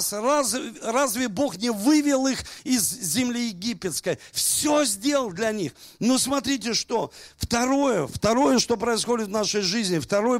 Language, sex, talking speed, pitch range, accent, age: Russian, male, 140 wpm, 175-240 Hz, native, 50-69